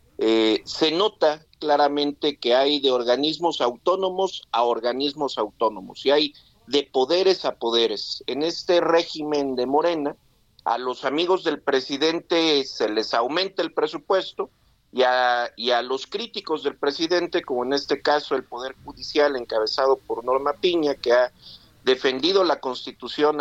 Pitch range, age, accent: 125-165 Hz, 50-69, Mexican